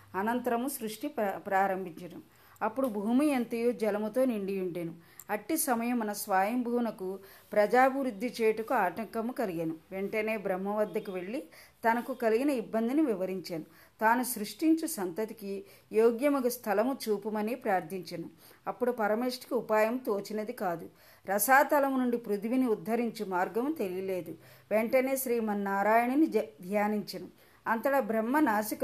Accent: native